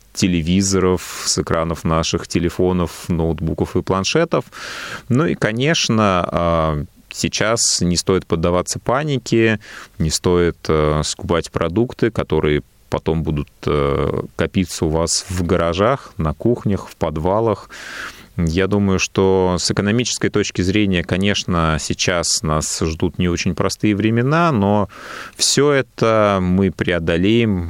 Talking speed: 115 wpm